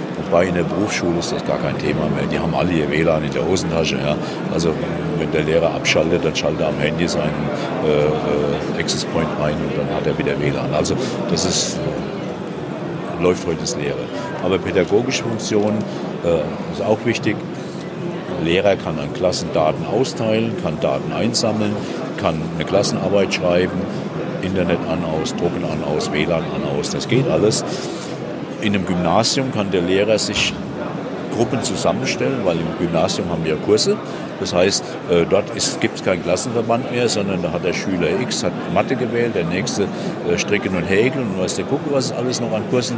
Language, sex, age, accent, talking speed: German, male, 50-69, German, 170 wpm